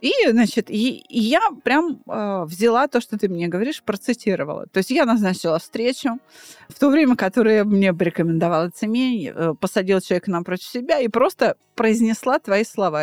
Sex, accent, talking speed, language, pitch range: female, native, 150 wpm, Russian, 190-255 Hz